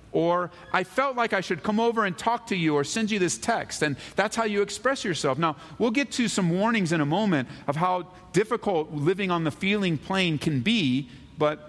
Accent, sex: American, male